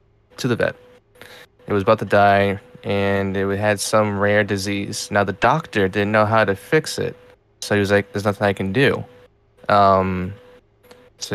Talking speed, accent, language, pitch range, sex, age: 180 wpm, American, English, 100-110 Hz, male, 20-39